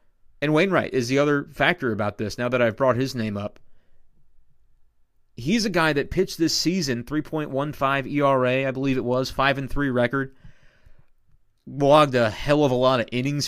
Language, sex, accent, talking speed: English, male, American, 170 wpm